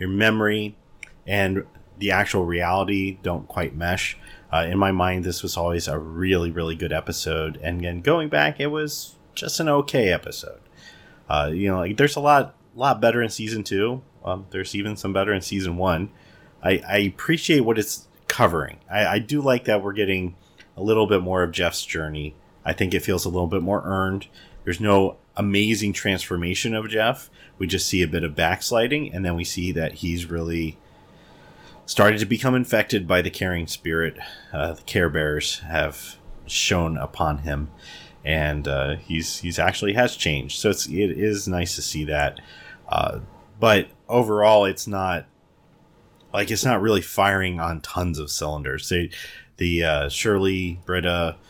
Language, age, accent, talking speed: English, 30-49, American, 170 wpm